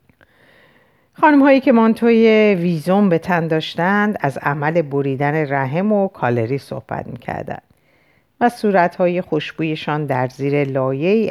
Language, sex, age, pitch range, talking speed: Persian, female, 50-69, 135-195 Hz, 110 wpm